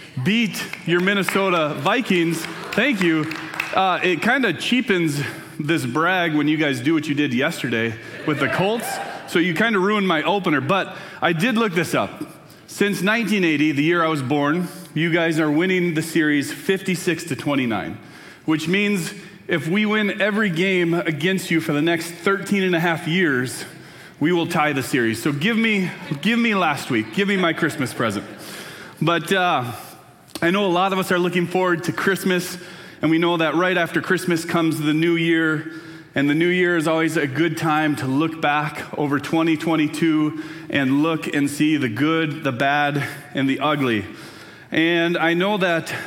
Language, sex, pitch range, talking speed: English, male, 150-185 Hz, 180 wpm